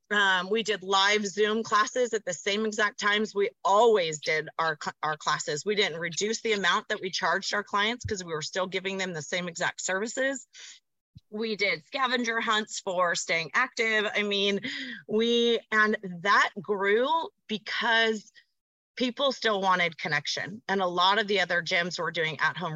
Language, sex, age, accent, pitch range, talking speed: English, female, 30-49, American, 185-225 Hz, 170 wpm